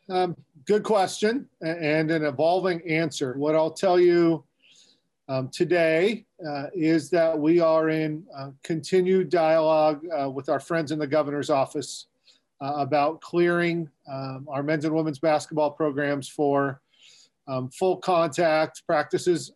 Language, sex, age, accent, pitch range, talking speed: English, male, 40-59, American, 145-175 Hz, 140 wpm